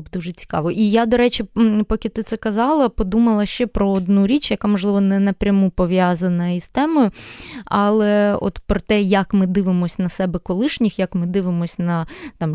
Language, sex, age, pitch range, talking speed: Ukrainian, female, 20-39, 175-220 Hz, 175 wpm